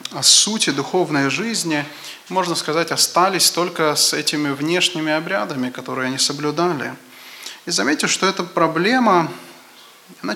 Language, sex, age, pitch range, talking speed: English, male, 20-39, 140-180 Hz, 120 wpm